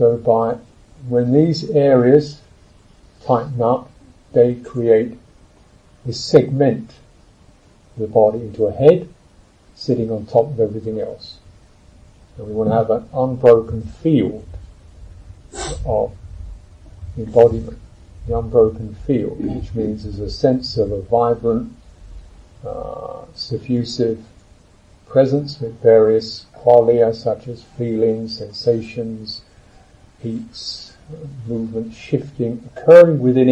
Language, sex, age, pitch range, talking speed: English, male, 50-69, 105-125 Hz, 105 wpm